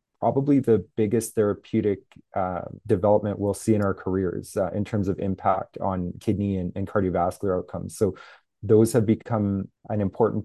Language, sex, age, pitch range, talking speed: English, male, 30-49, 95-110 Hz, 160 wpm